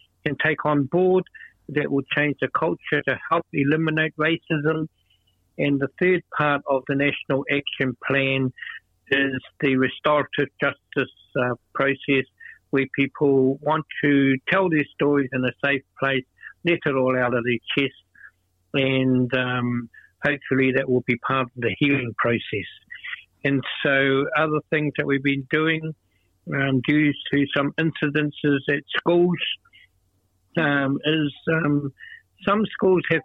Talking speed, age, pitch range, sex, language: 140 wpm, 60-79, 135-155 Hz, male, English